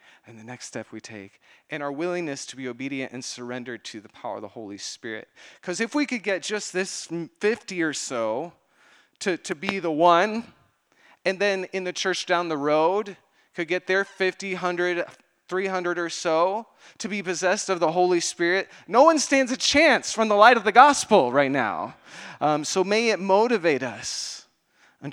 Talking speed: 190 wpm